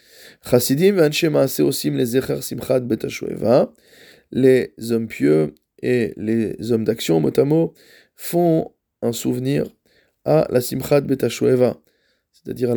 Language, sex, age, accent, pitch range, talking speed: French, male, 20-39, French, 115-135 Hz, 75 wpm